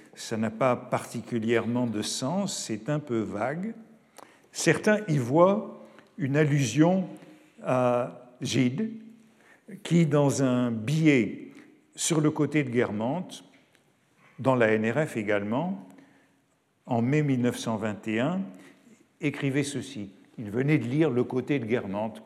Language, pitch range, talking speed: French, 120-160 Hz, 115 wpm